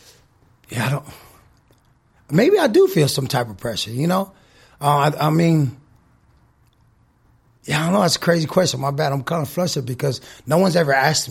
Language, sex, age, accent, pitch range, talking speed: English, male, 30-49, American, 120-150 Hz, 190 wpm